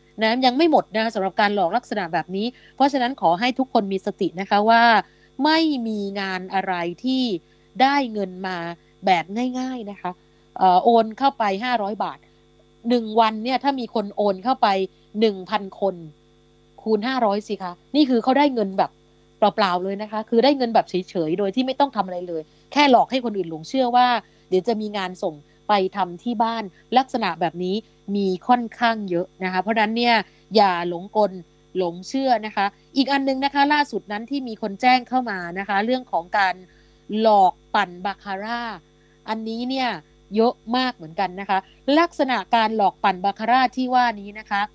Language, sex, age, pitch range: Thai, female, 30-49, 190-245 Hz